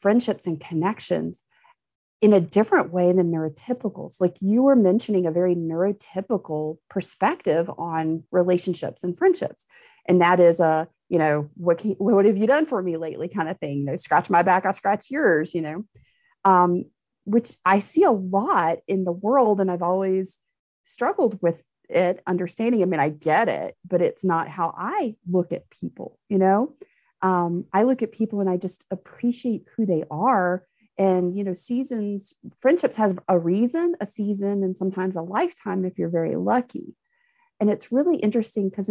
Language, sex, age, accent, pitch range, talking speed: English, female, 30-49, American, 170-215 Hz, 180 wpm